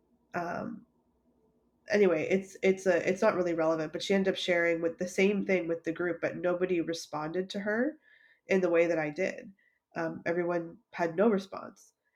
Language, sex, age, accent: English, female, 20-39, American